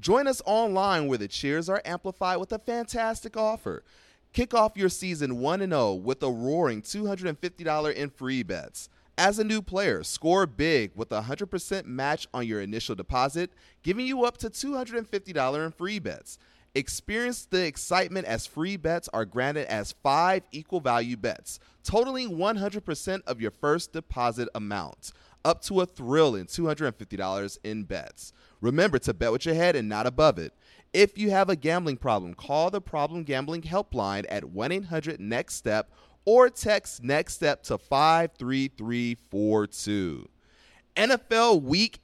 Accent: American